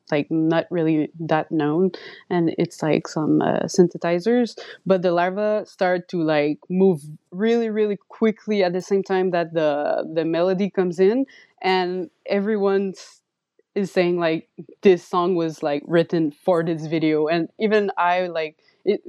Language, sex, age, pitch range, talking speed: English, female, 20-39, 165-195 Hz, 155 wpm